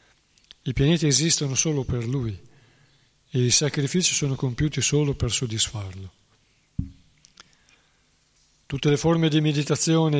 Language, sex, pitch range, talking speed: Italian, male, 120-140 Hz, 110 wpm